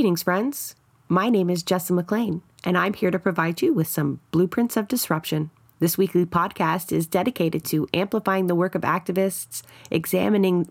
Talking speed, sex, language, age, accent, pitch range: 170 wpm, female, English, 30-49, American, 155-190 Hz